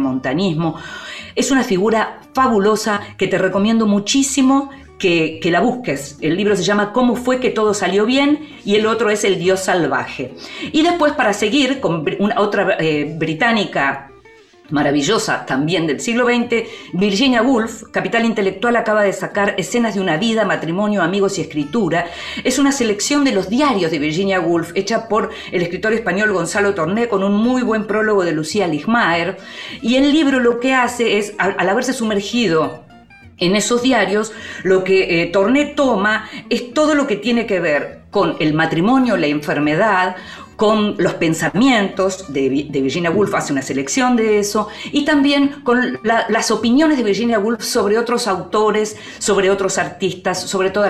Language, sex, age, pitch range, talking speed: Spanish, female, 50-69, 175-235 Hz, 165 wpm